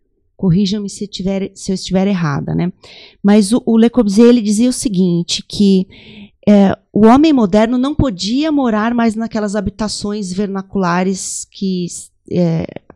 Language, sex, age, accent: Portuguese, female, 30-49, Brazilian